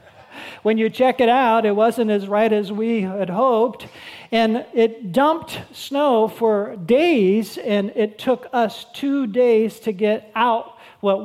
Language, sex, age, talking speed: English, male, 40-59, 155 wpm